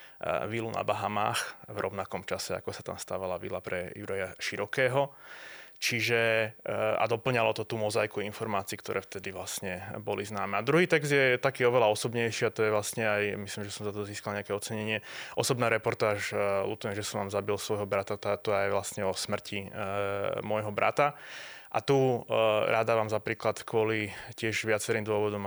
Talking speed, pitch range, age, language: 170 wpm, 105-115 Hz, 20-39, Slovak